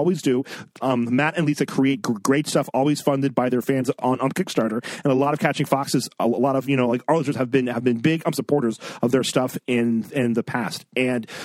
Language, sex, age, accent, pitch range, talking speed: English, male, 40-59, American, 135-165 Hz, 255 wpm